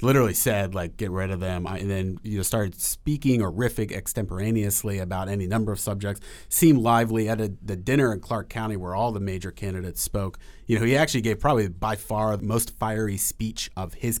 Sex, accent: male, American